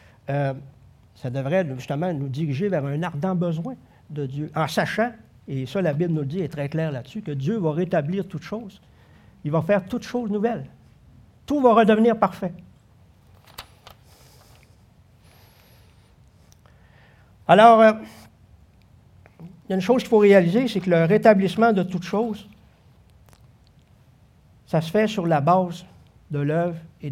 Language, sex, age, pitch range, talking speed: French, male, 60-79, 145-225 Hz, 145 wpm